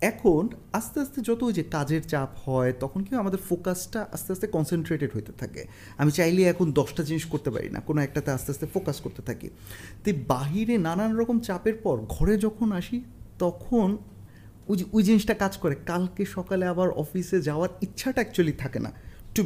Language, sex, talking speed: Bengali, male, 175 wpm